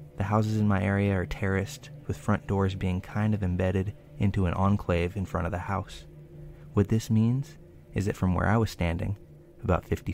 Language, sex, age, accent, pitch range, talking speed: English, male, 20-39, American, 95-130 Hz, 200 wpm